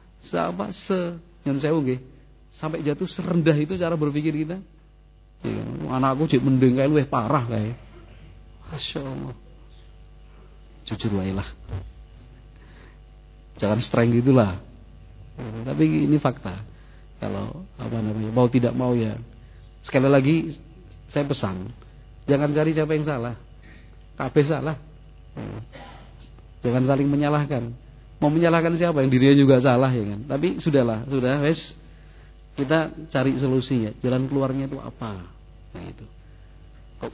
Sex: male